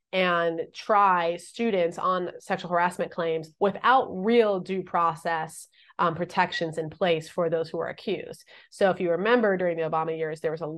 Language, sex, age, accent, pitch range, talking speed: English, female, 30-49, American, 170-205 Hz, 175 wpm